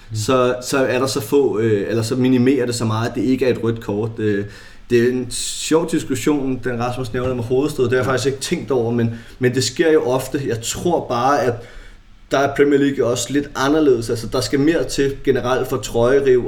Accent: native